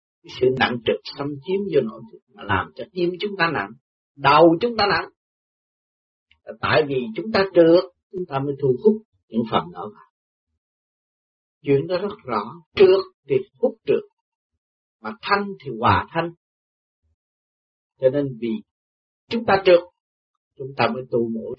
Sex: male